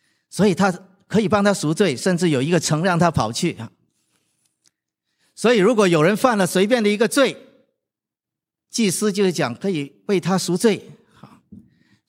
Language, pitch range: Chinese, 155-215 Hz